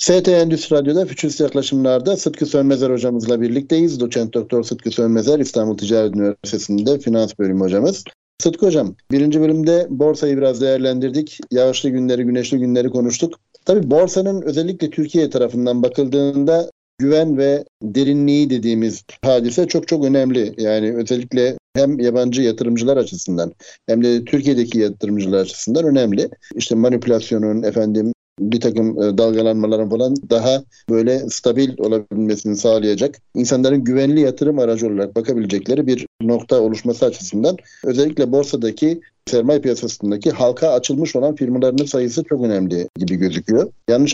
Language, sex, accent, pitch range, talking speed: Turkish, male, native, 115-145 Hz, 125 wpm